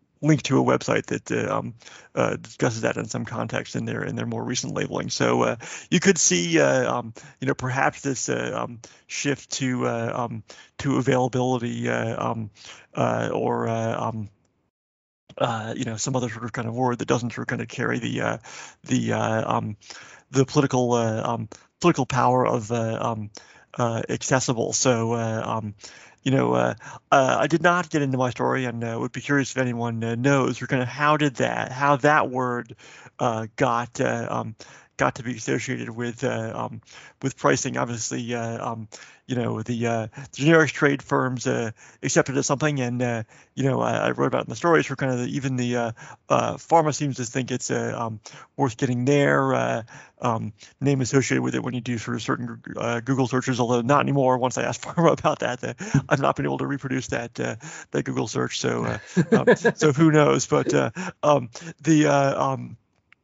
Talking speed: 180 wpm